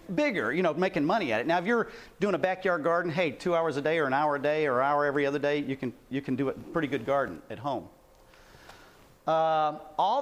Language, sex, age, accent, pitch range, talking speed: English, male, 40-59, American, 145-210 Hz, 250 wpm